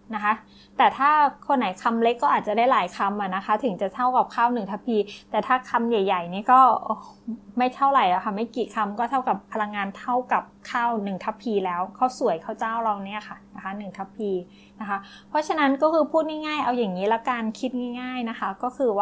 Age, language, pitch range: 20-39, Thai, 205-245 Hz